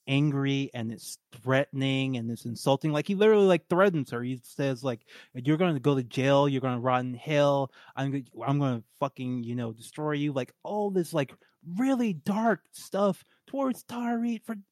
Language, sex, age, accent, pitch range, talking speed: English, male, 20-39, American, 125-165 Hz, 190 wpm